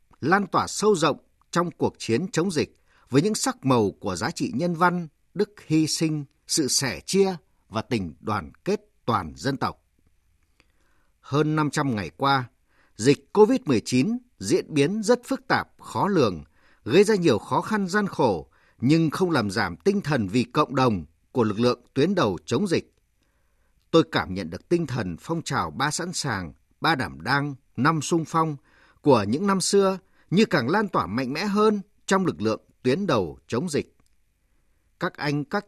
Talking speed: 175 wpm